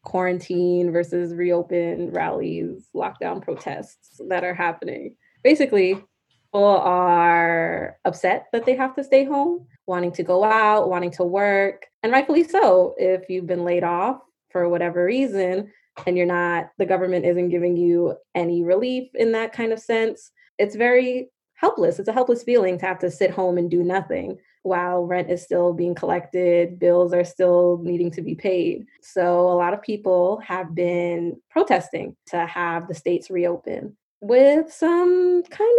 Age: 20-39